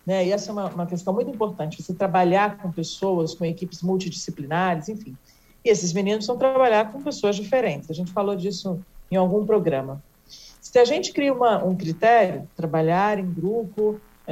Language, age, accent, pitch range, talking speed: Portuguese, 50-69, Brazilian, 170-225 Hz, 170 wpm